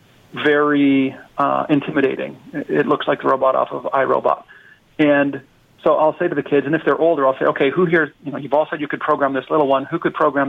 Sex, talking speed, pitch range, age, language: male, 235 wpm, 145-170 Hz, 40-59, English